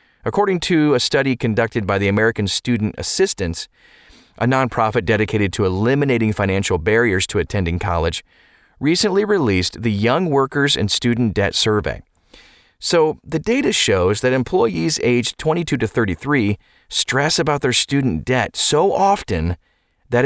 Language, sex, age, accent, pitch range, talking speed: English, male, 30-49, American, 100-140 Hz, 140 wpm